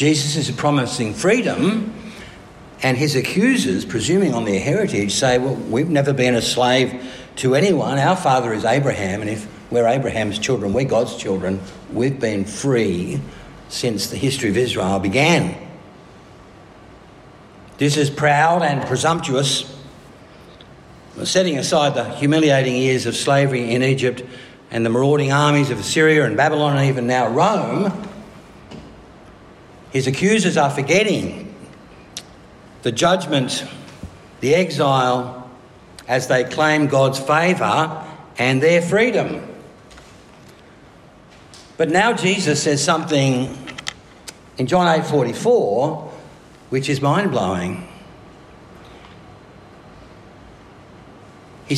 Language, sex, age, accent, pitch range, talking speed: English, male, 60-79, Australian, 120-155 Hz, 110 wpm